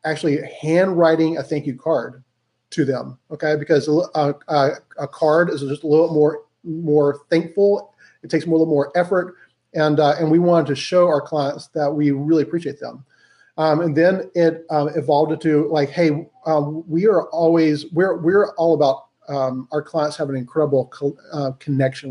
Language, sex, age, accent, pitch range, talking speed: English, male, 30-49, American, 145-170 Hz, 185 wpm